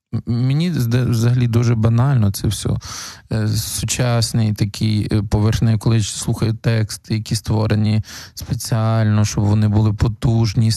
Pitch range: 105-125 Hz